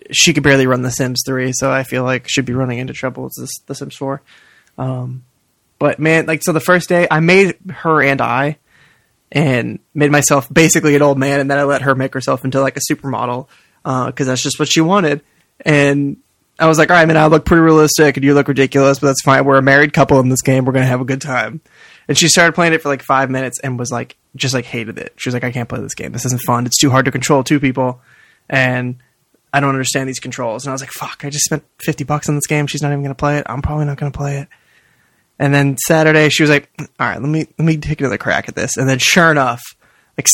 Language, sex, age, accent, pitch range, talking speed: English, male, 20-39, American, 130-150 Hz, 260 wpm